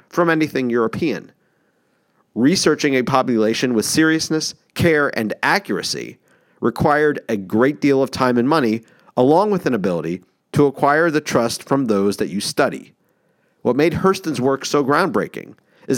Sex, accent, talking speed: male, American, 145 wpm